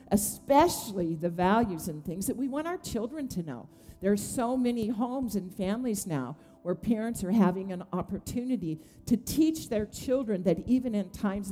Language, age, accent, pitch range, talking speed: English, 50-69, American, 180-230 Hz, 175 wpm